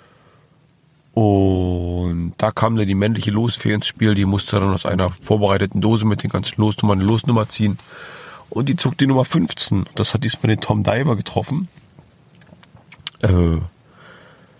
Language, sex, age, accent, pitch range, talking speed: German, male, 40-59, German, 95-130 Hz, 150 wpm